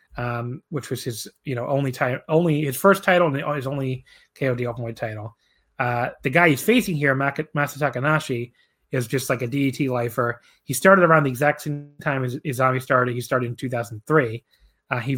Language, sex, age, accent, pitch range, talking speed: English, male, 30-49, American, 125-150 Hz, 195 wpm